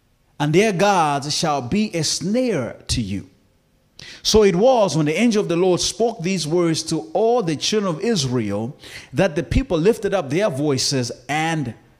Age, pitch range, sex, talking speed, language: 30-49, 125-195 Hz, male, 175 wpm, English